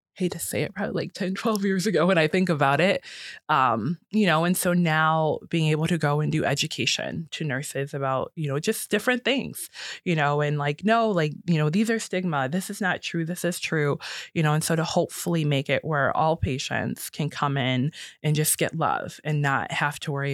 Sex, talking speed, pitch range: female, 225 wpm, 145-185 Hz